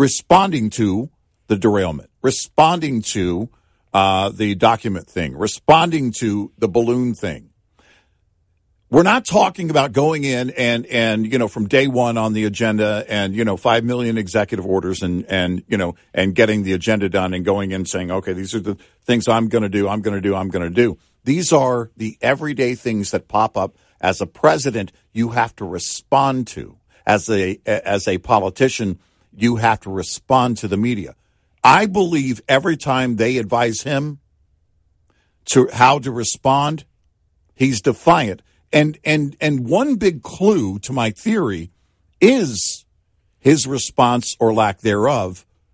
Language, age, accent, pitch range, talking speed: English, 50-69, American, 95-130 Hz, 165 wpm